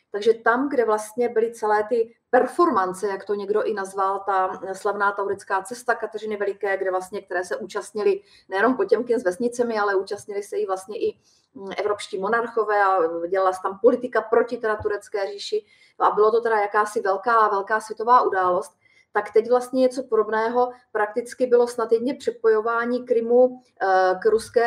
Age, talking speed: 30-49, 165 wpm